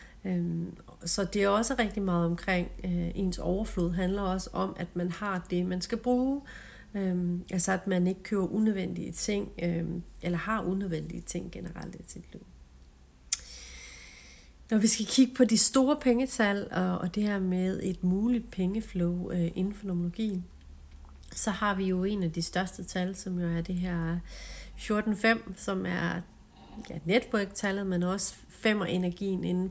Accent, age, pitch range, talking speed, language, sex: native, 40-59, 170-200 Hz, 155 wpm, Danish, female